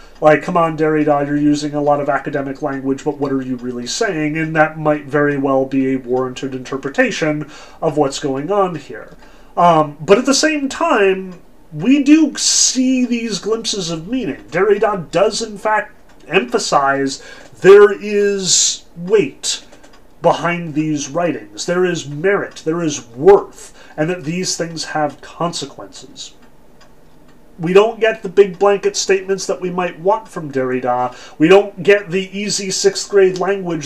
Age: 30-49